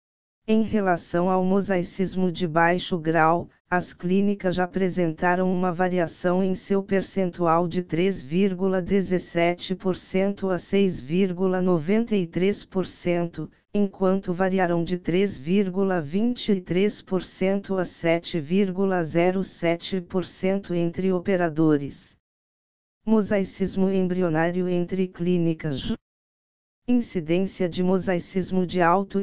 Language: Portuguese